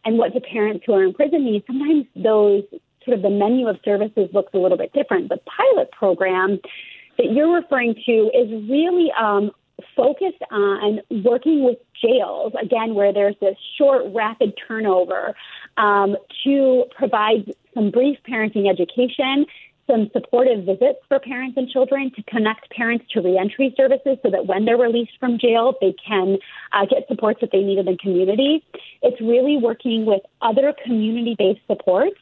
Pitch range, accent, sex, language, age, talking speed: 200-265 Hz, American, female, English, 30-49, 170 wpm